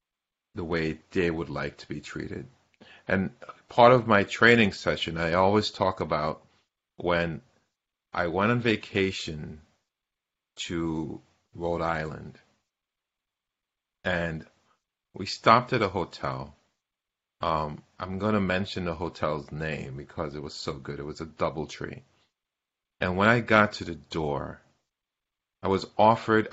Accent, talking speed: American, 135 wpm